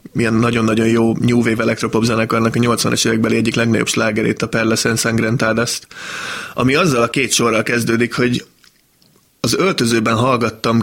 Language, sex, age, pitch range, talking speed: Hungarian, male, 20-39, 115-130 Hz, 140 wpm